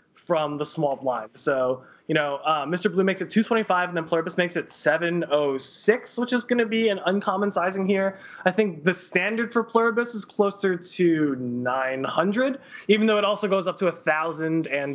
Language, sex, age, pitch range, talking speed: English, male, 20-39, 150-205 Hz, 185 wpm